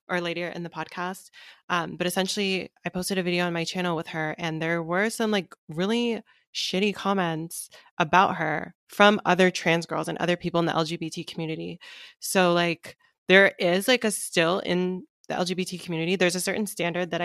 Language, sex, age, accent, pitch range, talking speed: English, female, 20-39, American, 165-190 Hz, 190 wpm